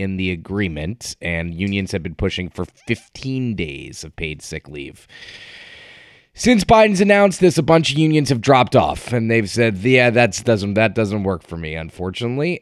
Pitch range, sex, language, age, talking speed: 100-130 Hz, male, English, 30-49, 180 wpm